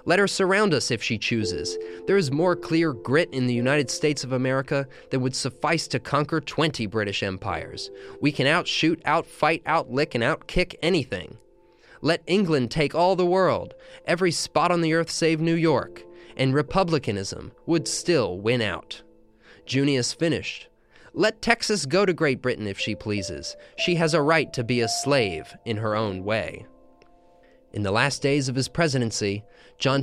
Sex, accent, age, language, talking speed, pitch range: male, American, 20-39, English, 170 wpm, 115-160 Hz